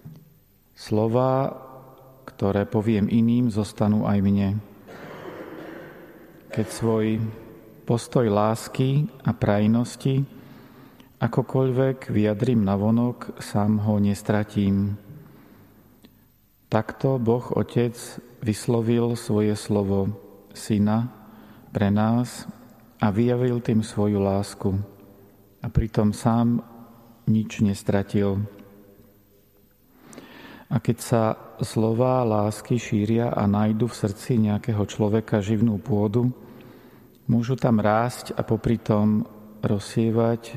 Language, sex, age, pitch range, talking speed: Slovak, male, 40-59, 105-120 Hz, 85 wpm